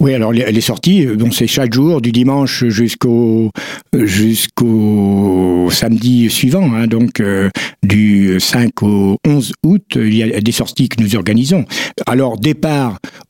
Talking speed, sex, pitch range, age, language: 150 wpm, male, 110-135 Hz, 60-79, French